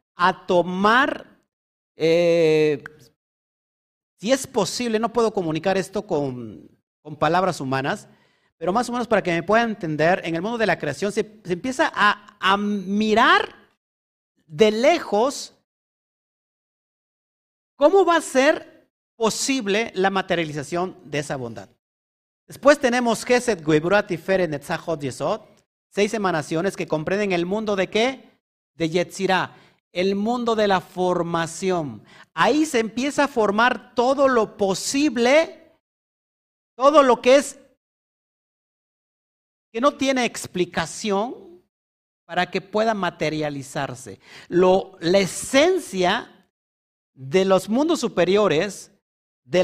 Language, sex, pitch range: Spanish, male, 170-235 Hz